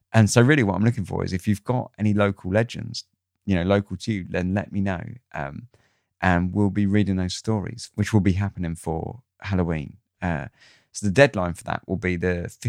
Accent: British